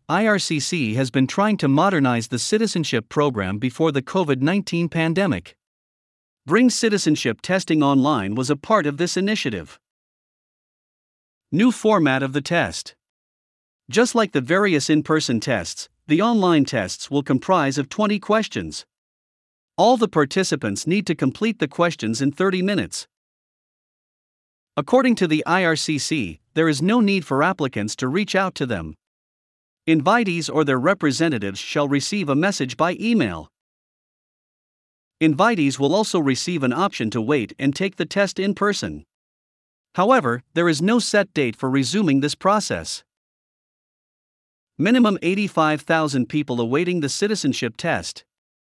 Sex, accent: male, American